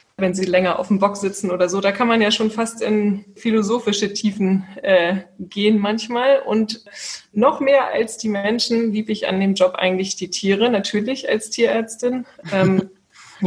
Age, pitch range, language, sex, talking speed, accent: 20-39, 185-220 Hz, German, female, 175 wpm, German